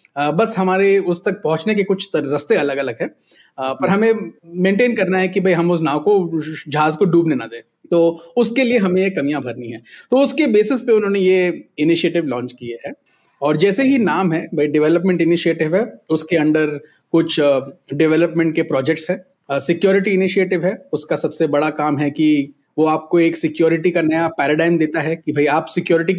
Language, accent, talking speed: Hindi, native, 195 wpm